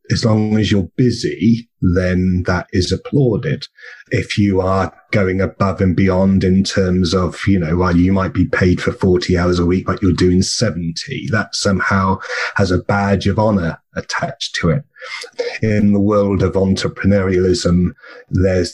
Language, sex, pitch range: English, male, 90-100 Hz